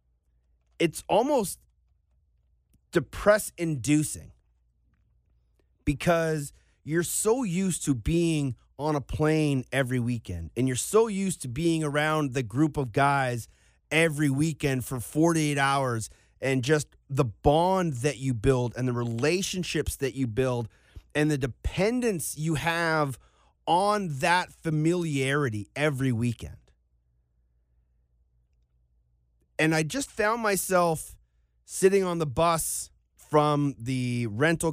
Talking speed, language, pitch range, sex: 110 wpm, English, 110-160 Hz, male